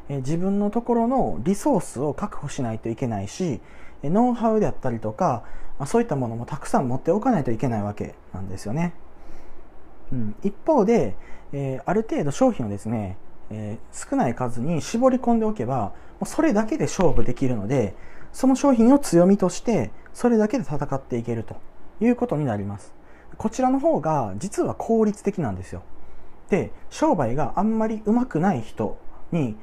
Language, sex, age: Japanese, male, 40-59